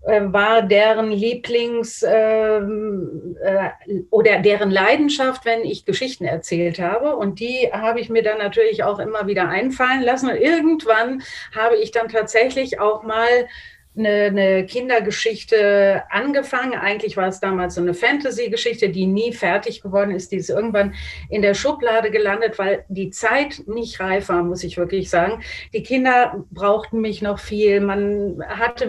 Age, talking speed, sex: 40-59, 150 wpm, female